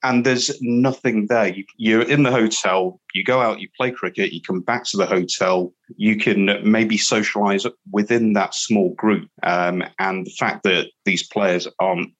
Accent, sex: British, male